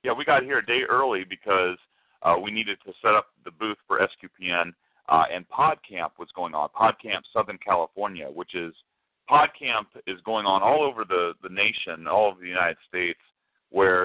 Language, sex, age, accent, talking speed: English, male, 40-59, American, 190 wpm